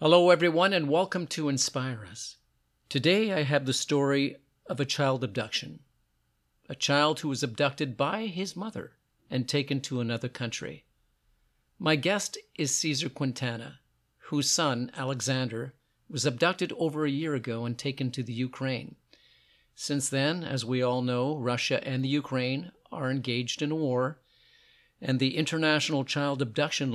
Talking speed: 150 wpm